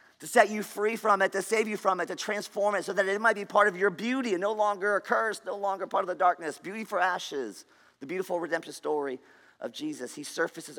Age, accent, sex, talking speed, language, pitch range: 40-59, American, male, 250 wpm, English, 150-245 Hz